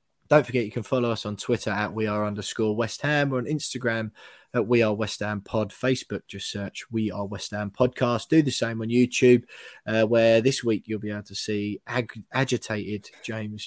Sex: male